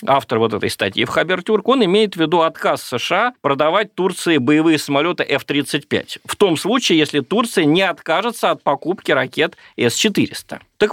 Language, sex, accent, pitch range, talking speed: Russian, male, native, 145-220 Hz, 160 wpm